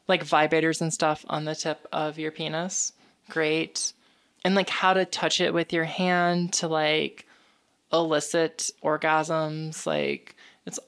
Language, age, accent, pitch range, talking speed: English, 20-39, American, 160-200 Hz, 145 wpm